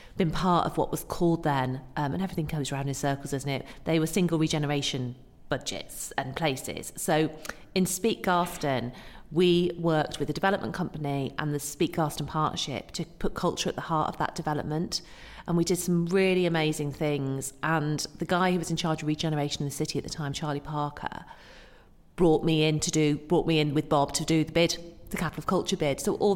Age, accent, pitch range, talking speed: 40-59, British, 145-175 Hz, 210 wpm